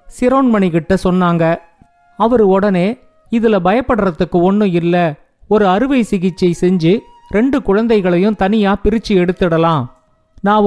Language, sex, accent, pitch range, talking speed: Tamil, male, native, 180-220 Hz, 100 wpm